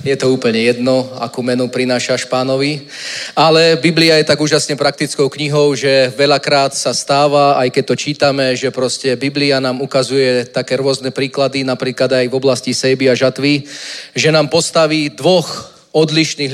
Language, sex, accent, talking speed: Czech, male, native, 160 wpm